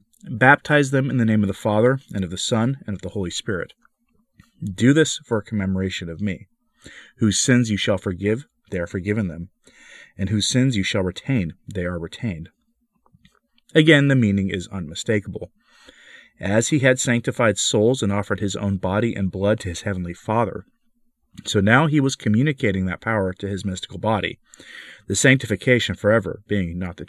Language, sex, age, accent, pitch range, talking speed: English, male, 40-59, American, 95-115 Hz, 175 wpm